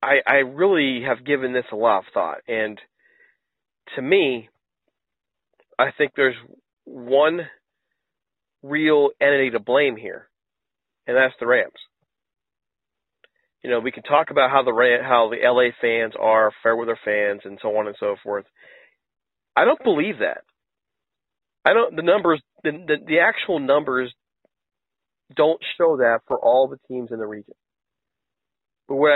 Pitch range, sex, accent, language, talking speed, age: 125-170 Hz, male, American, English, 150 wpm, 40-59